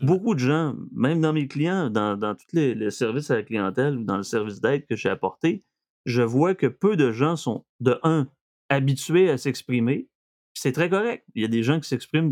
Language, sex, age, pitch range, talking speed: French, male, 30-49, 115-150 Hz, 225 wpm